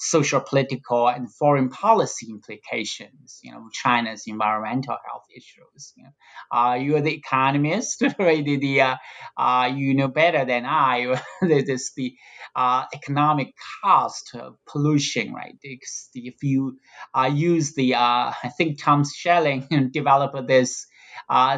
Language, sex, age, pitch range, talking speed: English, male, 30-49, 130-155 Hz, 140 wpm